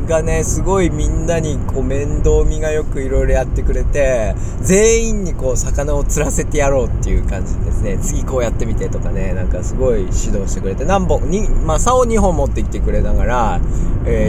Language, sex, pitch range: Japanese, male, 95-135 Hz